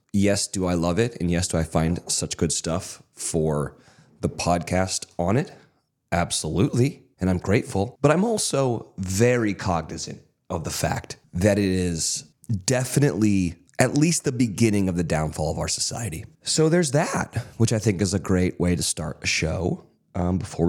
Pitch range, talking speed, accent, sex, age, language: 90-120 Hz, 175 wpm, American, male, 30-49, English